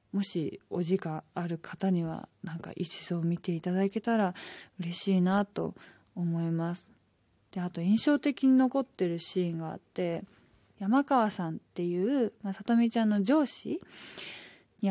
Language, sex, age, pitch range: Japanese, female, 20-39, 175-225 Hz